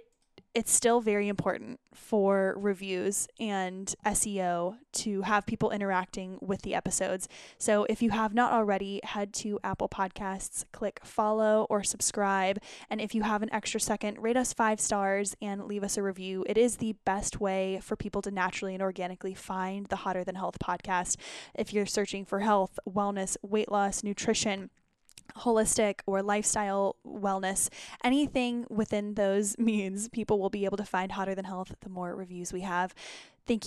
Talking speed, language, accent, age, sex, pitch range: 170 wpm, English, American, 10-29, female, 190-220 Hz